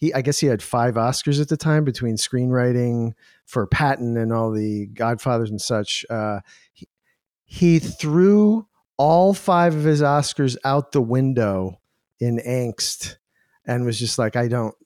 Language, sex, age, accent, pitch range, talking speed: English, male, 50-69, American, 115-150 Hz, 160 wpm